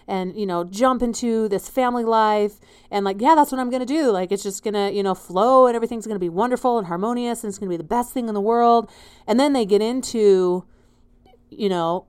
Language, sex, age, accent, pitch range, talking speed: English, female, 30-49, American, 190-225 Hz, 255 wpm